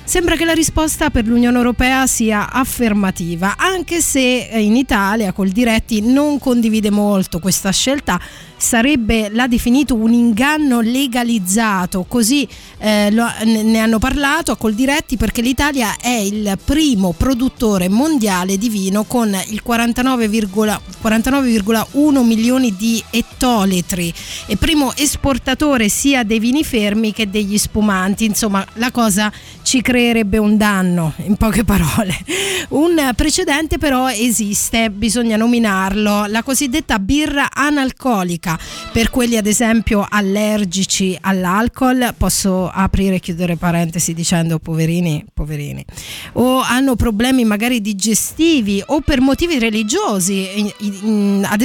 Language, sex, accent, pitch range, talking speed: Italian, female, native, 200-255 Hz, 120 wpm